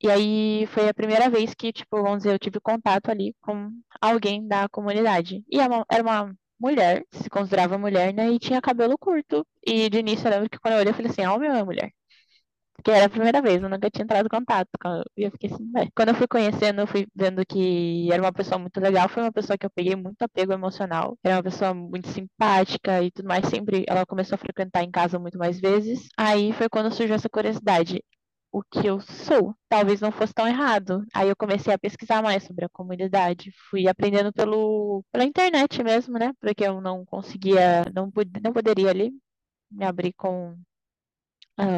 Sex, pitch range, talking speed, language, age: female, 190-220 Hz, 210 wpm, Portuguese, 10-29